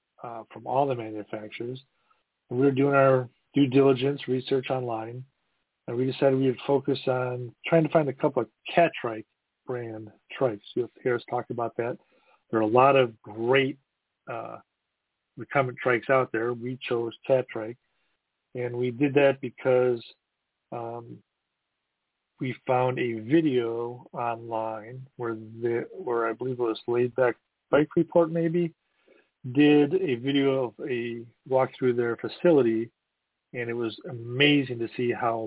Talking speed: 150 wpm